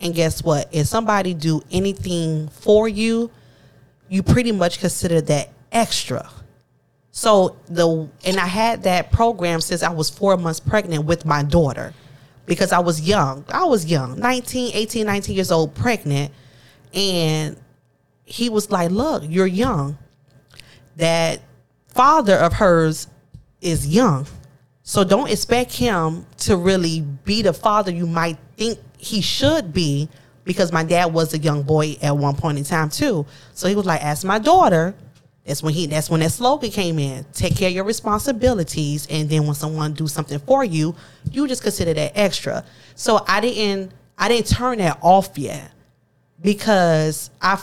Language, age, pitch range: English, 30-49, 145-200 Hz